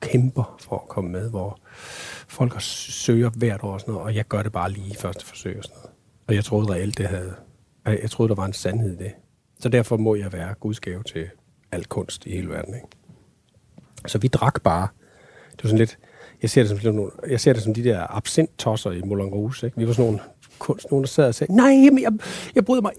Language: Danish